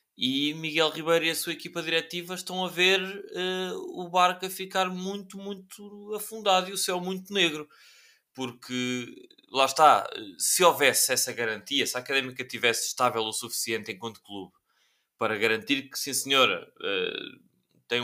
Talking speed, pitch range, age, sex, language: 150 wpm, 125-165 Hz, 20-39, male, Portuguese